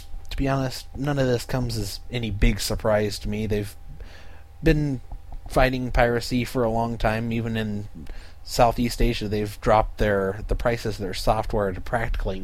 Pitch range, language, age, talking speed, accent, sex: 80-115 Hz, English, 30-49, 165 wpm, American, male